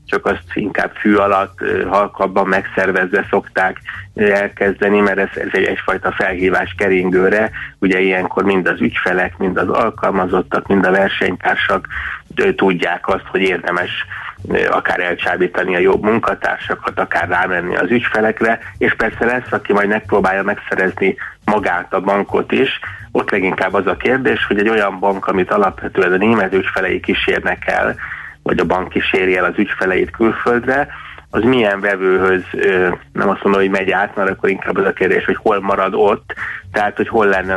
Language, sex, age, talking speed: Hungarian, male, 30-49, 160 wpm